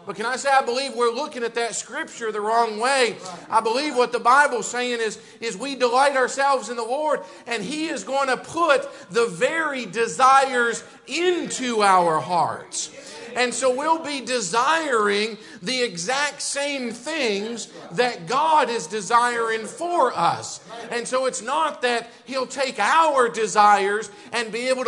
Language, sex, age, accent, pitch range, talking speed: English, male, 50-69, American, 230-280 Hz, 165 wpm